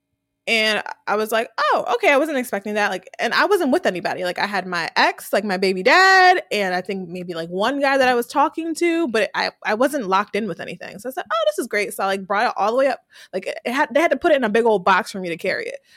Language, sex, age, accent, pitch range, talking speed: English, female, 20-39, American, 210-325 Hz, 295 wpm